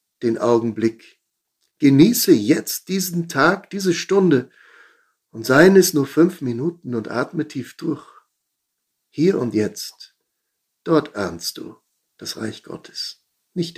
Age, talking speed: 60-79, 120 wpm